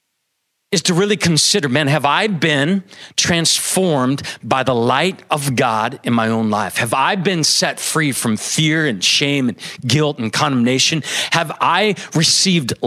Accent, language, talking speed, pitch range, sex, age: American, English, 160 wpm, 135-180 Hz, male, 40-59